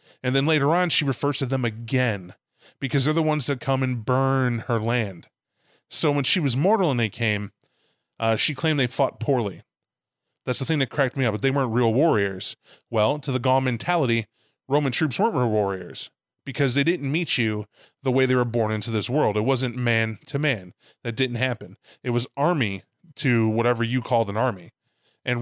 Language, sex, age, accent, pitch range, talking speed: English, male, 20-39, American, 115-140 Hz, 205 wpm